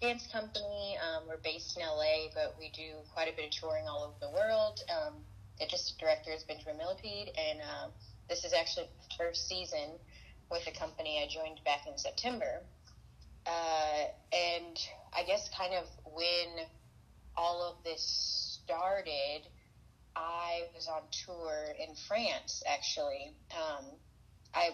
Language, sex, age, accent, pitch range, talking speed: English, female, 30-49, American, 155-185 Hz, 150 wpm